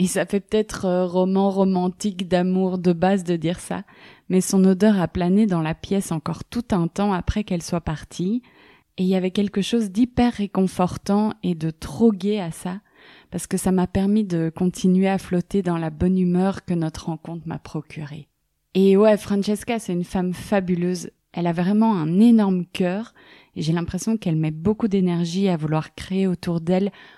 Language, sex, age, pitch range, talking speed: French, female, 20-39, 175-200 Hz, 190 wpm